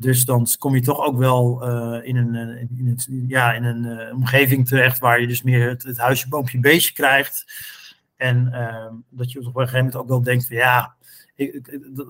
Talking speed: 190 wpm